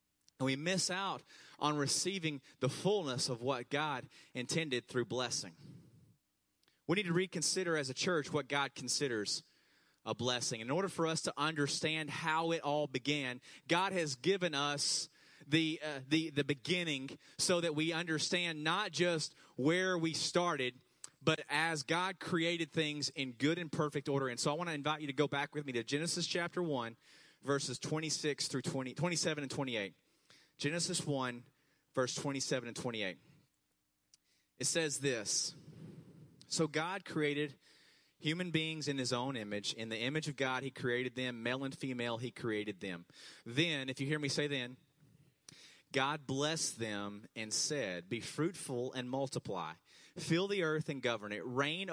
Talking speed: 170 wpm